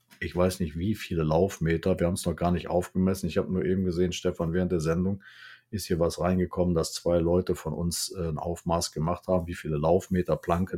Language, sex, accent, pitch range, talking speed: German, male, German, 85-100 Hz, 215 wpm